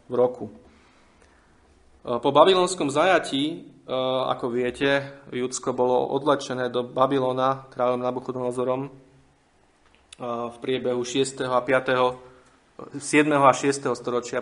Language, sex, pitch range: Slovak, male, 125-140 Hz